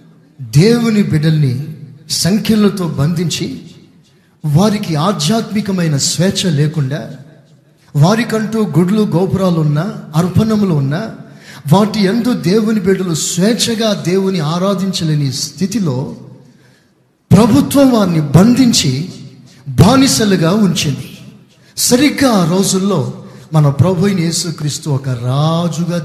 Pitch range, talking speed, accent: 150-205 Hz, 80 wpm, native